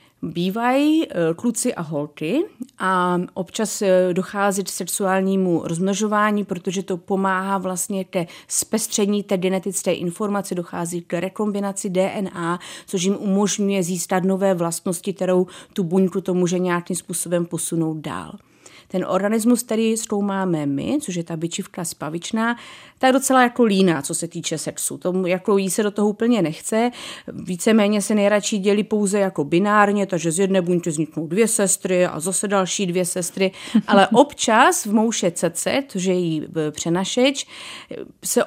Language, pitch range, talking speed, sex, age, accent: Czech, 175-210 Hz, 145 wpm, female, 30-49, native